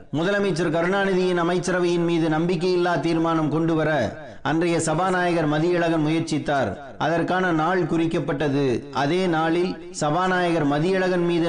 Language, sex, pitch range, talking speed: Tamil, male, 150-170 Hz, 100 wpm